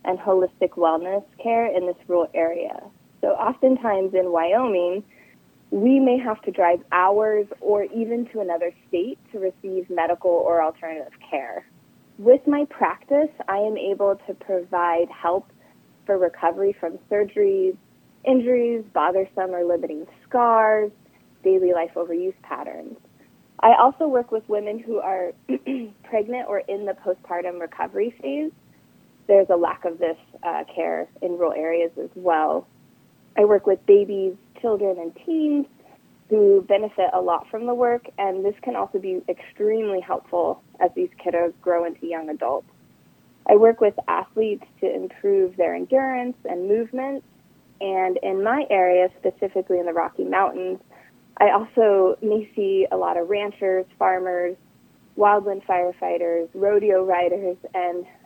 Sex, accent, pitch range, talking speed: female, American, 180-225 Hz, 140 wpm